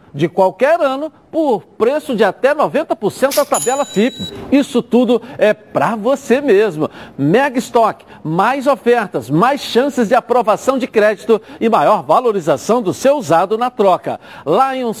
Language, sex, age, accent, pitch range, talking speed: Portuguese, male, 50-69, Brazilian, 195-260 Hz, 145 wpm